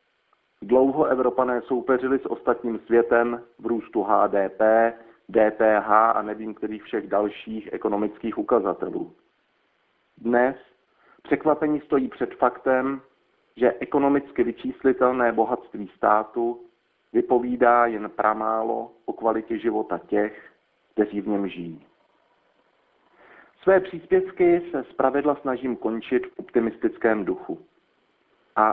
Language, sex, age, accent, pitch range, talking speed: Czech, male, 40-59, native, 110-140 Hz, 100 wpm